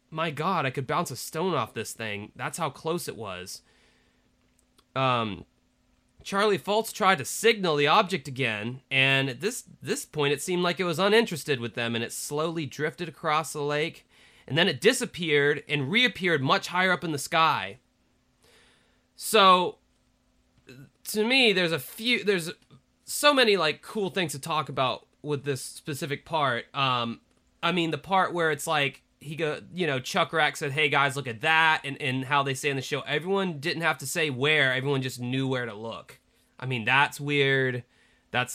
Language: English